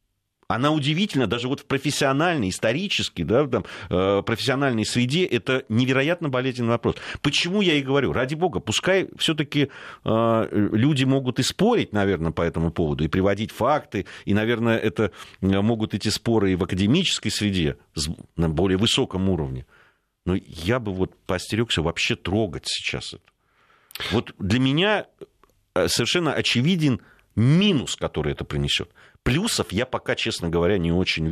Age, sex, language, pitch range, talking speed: 40-59, male, Russian, 100-150 Hz, 140 wpm